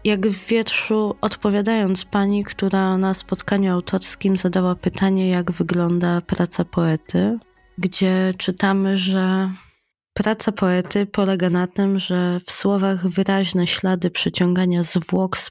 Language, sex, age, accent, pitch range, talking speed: Polish, female, 20-39, native, 180-195 Hz, 120 wpm